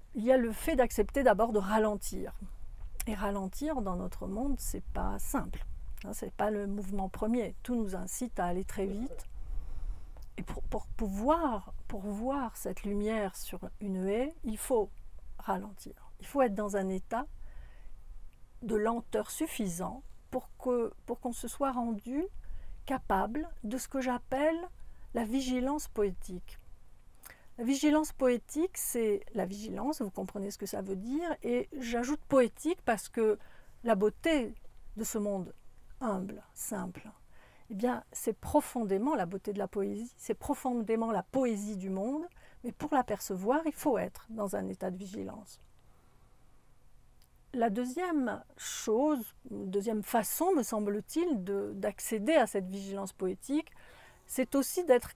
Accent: French